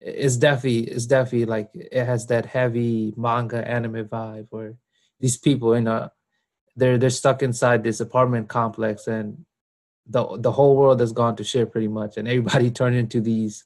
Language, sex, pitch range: English, male, 115-135 Hz